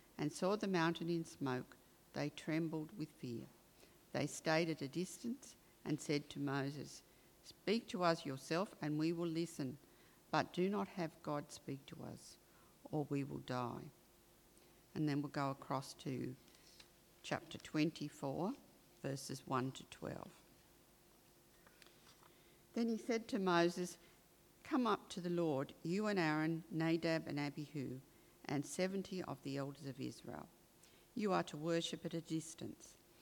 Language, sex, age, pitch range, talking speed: English, female, 50-69, 145-175 Hz, 145 wpm